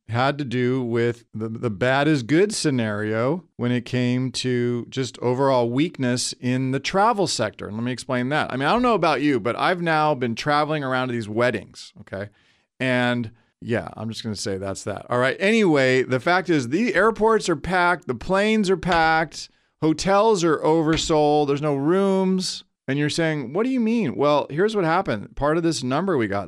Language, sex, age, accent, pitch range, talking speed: English, male, 40-59, American, 120-165 Hz, 200 wpm